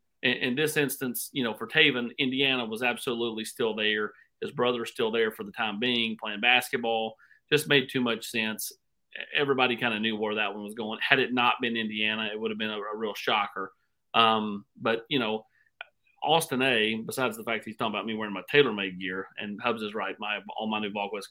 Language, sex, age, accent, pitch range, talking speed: English, male, 40-59, American, 110-145 Hz, 215 wpm